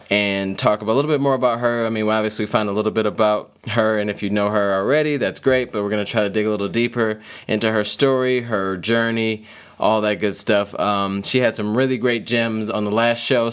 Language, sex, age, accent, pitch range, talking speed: English, male, 20-39, American, 100-120 Hz, 255 wpm